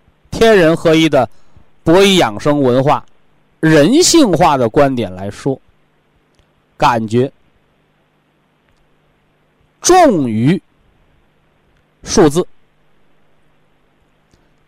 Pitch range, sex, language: 125-195 Hz, male, Chinese